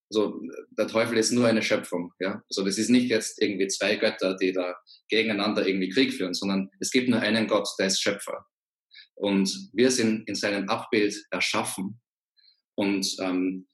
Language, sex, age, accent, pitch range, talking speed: German, male, 20-39, German, 95-110 Hz, 175 wpm